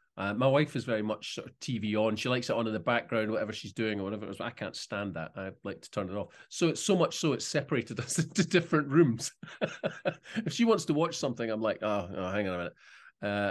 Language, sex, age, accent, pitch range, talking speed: English, male, 30-49, British, 110-150 Hz, 270 wpm